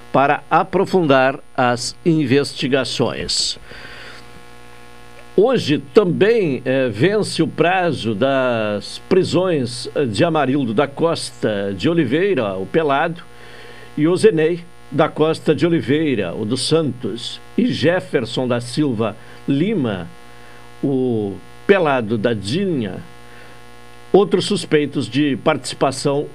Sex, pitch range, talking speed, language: male, 115-160 Hz, 95 wpm, Portuguese